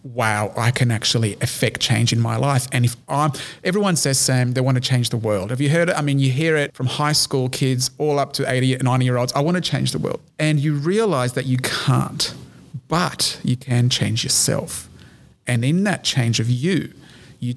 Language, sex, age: English, male, 30-49